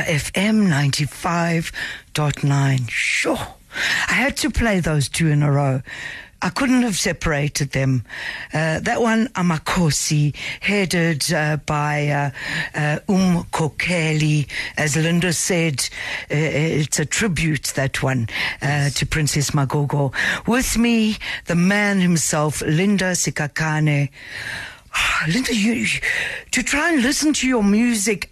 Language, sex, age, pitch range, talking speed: English, female, 60-79, 155-220 Hz, 120 wpm